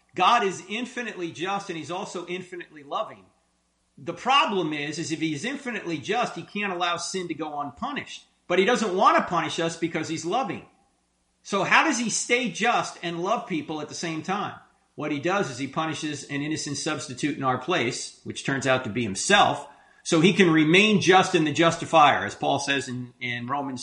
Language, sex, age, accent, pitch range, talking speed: English, male, 40-59, American, 145-205 Hz, 200 wpm